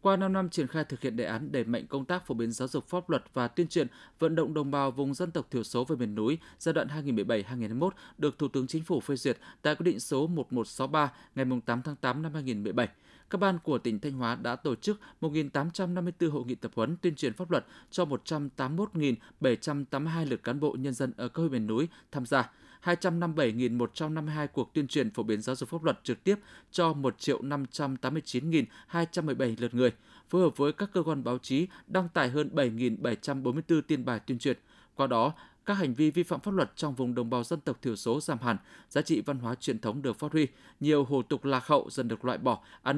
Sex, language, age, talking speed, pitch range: male, Vietnamese, 20-39, 220 wpm, 125-160 Hz